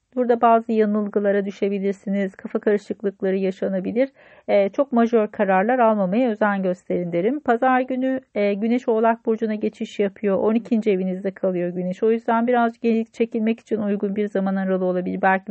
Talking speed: 145 wpm